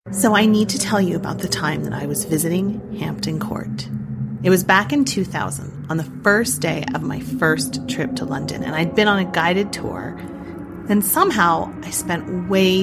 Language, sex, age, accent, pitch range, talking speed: English, female, 30-49, American, 135-205 Hz, 195 wpm